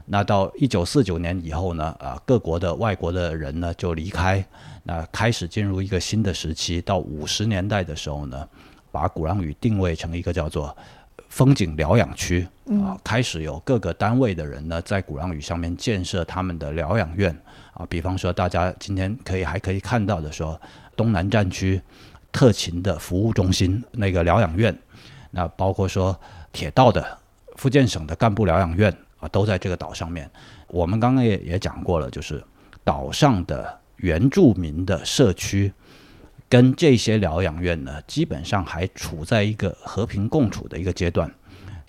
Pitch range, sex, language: 85-105 Hz, male, Chinese